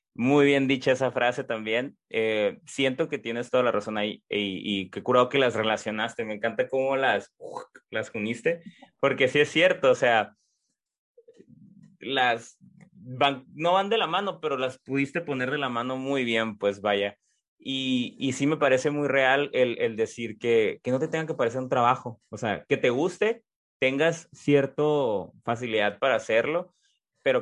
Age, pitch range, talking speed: 30-49, 110-140 Hz, 180 wpm